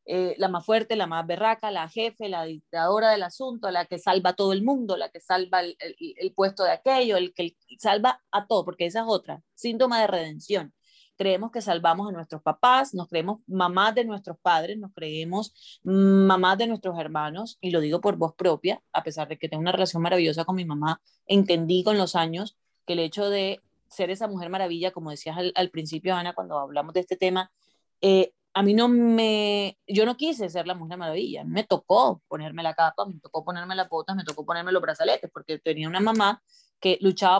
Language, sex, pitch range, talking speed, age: English, female, 170-210 Hz, 210 wpm, 30-49